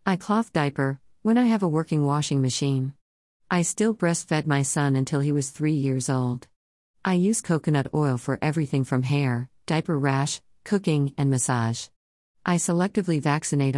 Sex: female